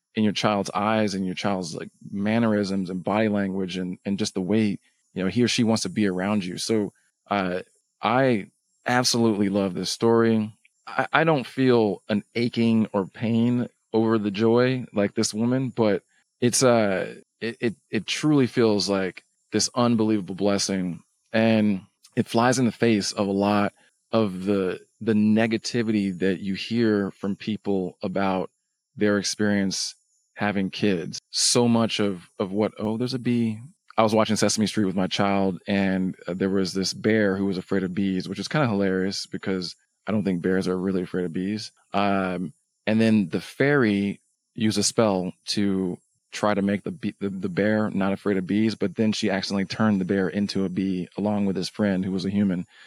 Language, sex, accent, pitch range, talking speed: English, male, American, 95-110 Hz, 190 wpm